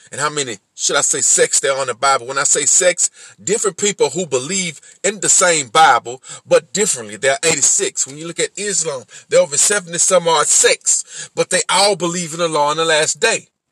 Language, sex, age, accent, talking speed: English, male, 40-59, American, 225 wpm